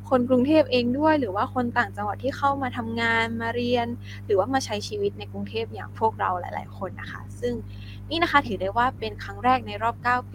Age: 20-39